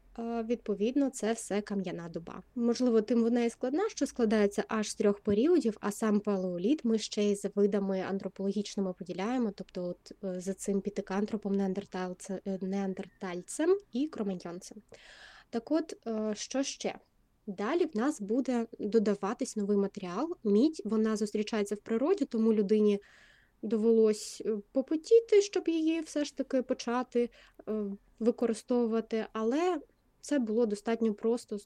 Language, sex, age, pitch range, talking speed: Ukrainian, female, 20-39, 200-245 Hz, 130 wpm